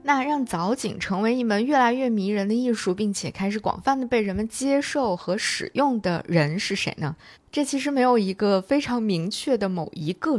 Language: Chinese